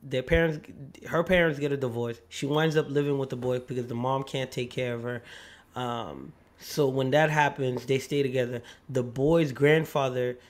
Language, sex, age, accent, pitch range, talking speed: English, male, 20-39, American, 130-150 Hz, 190 wpm